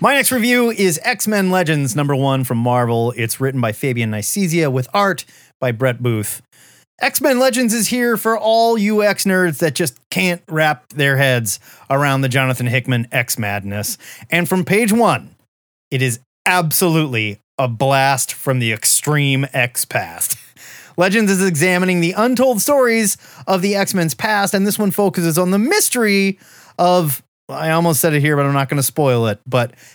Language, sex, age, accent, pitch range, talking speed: English, male, 30-49, American, 135-210 Hz, 170 wpm